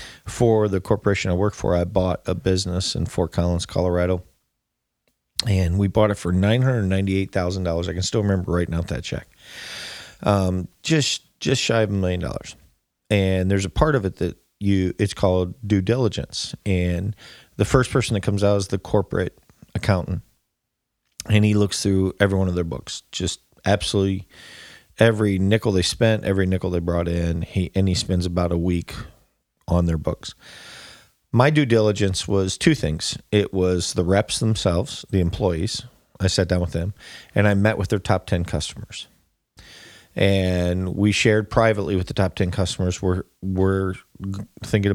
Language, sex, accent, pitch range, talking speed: English, male, American, 90-105 Hz, 170 wpm